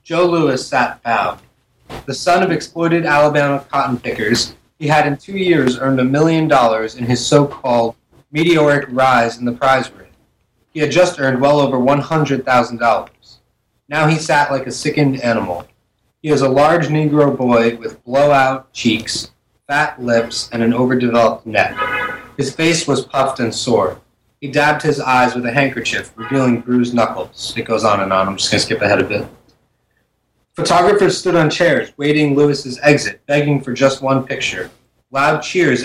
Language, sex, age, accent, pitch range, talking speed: English, male, 30-49, American, 120-145 Hz, 170 wpm